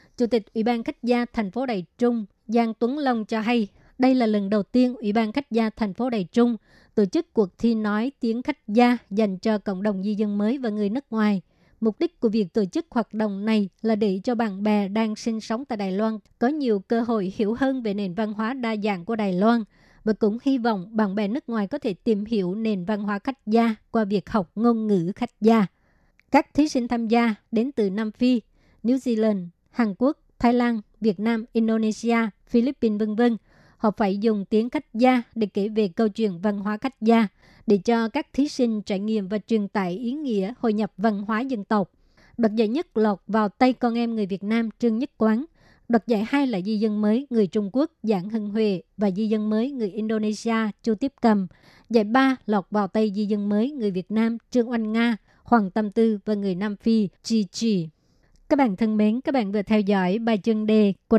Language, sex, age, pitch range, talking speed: Vietnamese, male, 20-39, 210-235 Hz, 225 wpm